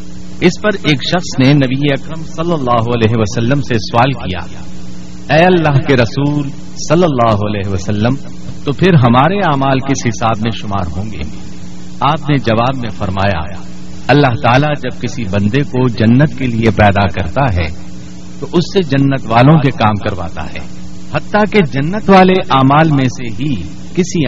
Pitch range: 95-150 Hz